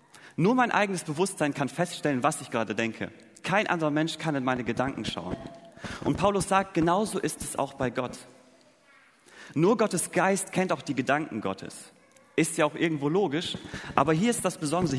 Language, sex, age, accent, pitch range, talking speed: German, male, 30-49, German, 135-175 Hz, 180 wpm